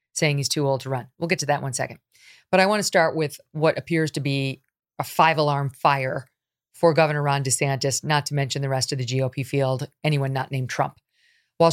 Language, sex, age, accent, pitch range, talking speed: English, female, 40-59, American, 140-180 Hz, 230 wpm